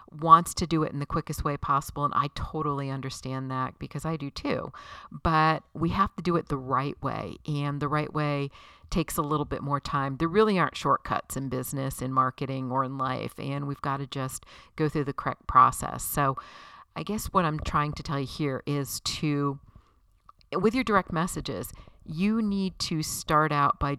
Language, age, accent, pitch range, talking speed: English, 50-69, American, 135-165 Hz, 200 wpm